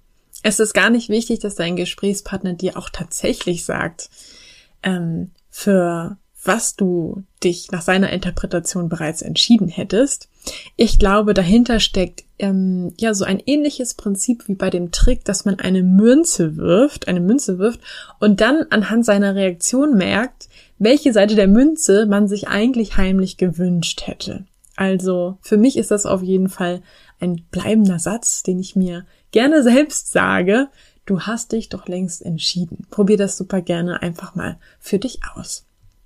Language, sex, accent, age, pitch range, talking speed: German, female, German, 20-39, 180-210 Hz, 155 wpm